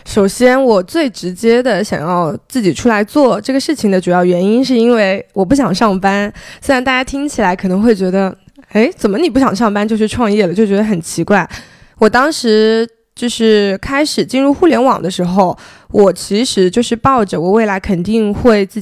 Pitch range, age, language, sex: 190-235 Hz, 20-39, Chinese, female